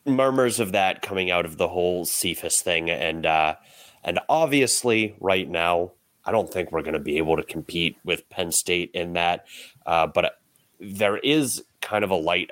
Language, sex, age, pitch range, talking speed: English, male, 30-49, 85-120 Hz, 185 wpm